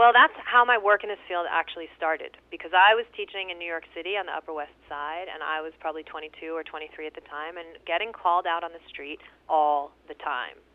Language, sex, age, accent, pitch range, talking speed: English, female, 30-49, American, 160-220 Hz, 240 wpm